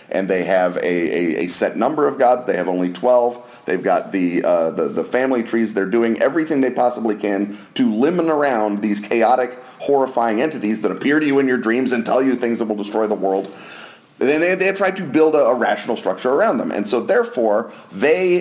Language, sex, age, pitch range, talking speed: English, male, 30-49, 105-135 Hz, 220 wpm